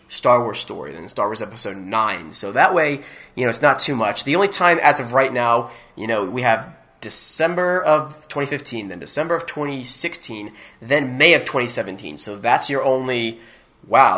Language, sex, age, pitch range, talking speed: English, male, 20-39, 115-140 Hz, 185 wpm